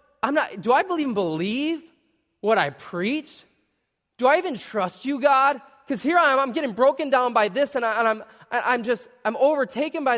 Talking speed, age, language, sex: 205 wpm, 20-39, English, male